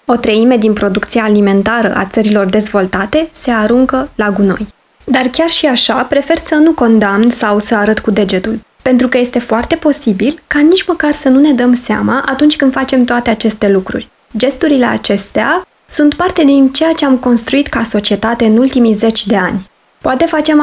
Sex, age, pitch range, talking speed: female, 20-39, 215-260 Hz, 180 wpm